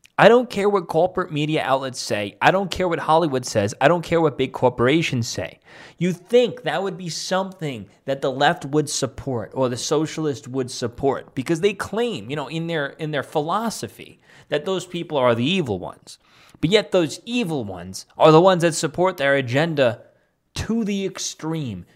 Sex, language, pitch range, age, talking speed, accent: male, English, 130-180 Hz, 20-39, 190 wpm, American